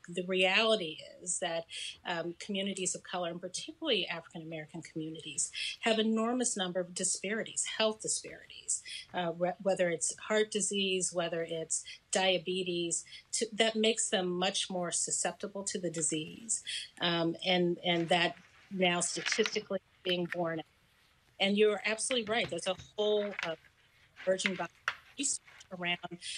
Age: 40-59